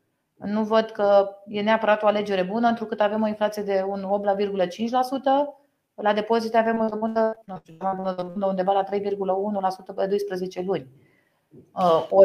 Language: Romanian